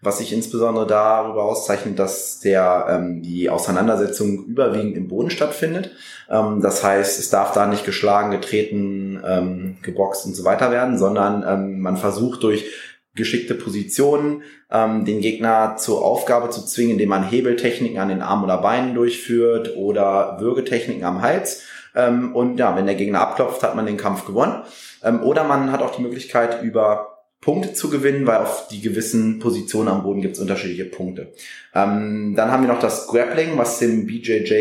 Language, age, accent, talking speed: German, 20-39, German, 175 wpm